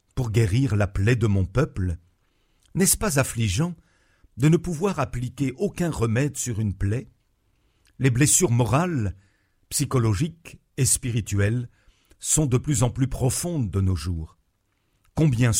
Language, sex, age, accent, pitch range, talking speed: French, male, 50-69, French, 100-140 Hz, 135 wpm